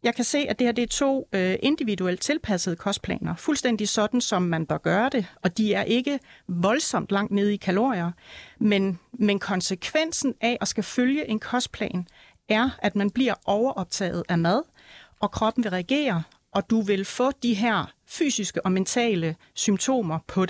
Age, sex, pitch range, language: 40-59, female, 190-245 Hz, Danish